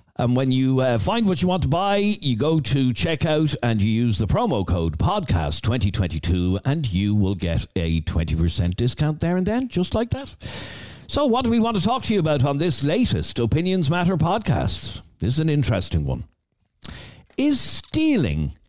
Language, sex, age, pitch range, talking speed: English, male, 60-79, 95-155 Hz, 185 wpm